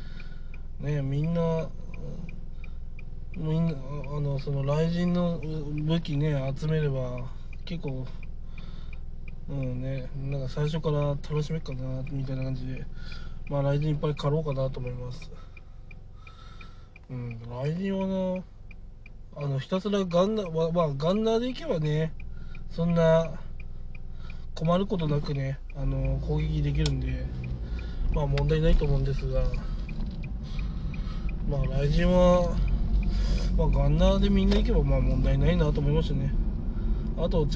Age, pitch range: 20-39, 110-155 Hz